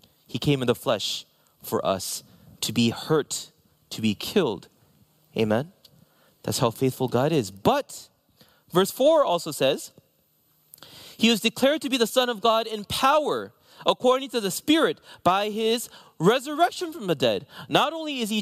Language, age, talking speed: English, 30-49, 160 wpm